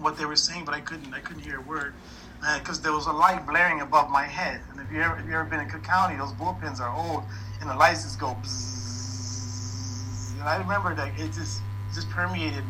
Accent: American